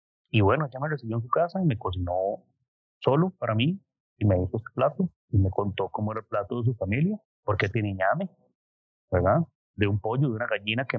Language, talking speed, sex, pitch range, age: Spanish, 220 wpm, male, 100-125 Hz, 30-49